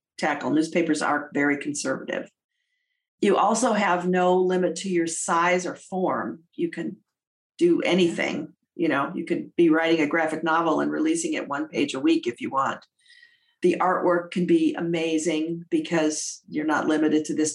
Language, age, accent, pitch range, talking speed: English, 50-69, American, 170-250 Hz, 170 wpm